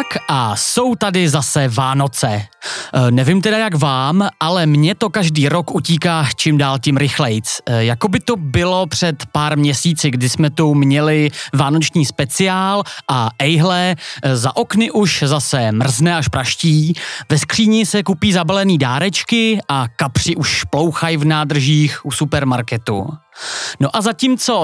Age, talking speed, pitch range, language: 30-49, 140 wpm, 140-180 Hz, Czech